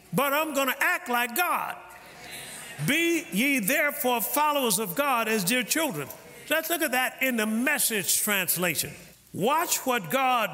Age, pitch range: 50-69, 260-355 Hz